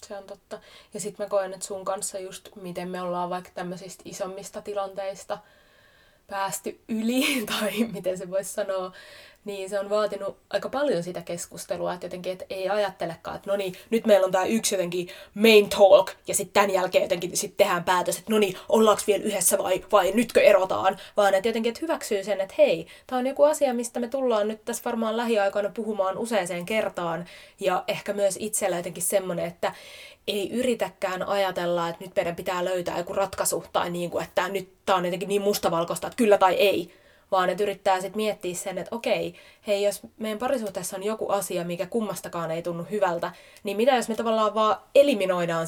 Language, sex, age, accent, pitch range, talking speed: Finnish, female, 20-39, native, 185-210 Hz, 195 wpm